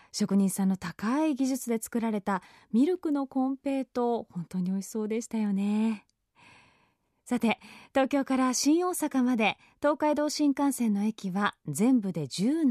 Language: Japanese